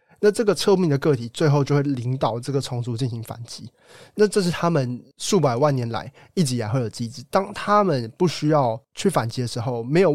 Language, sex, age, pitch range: Chinese, male, 20-39, 125-160 Hz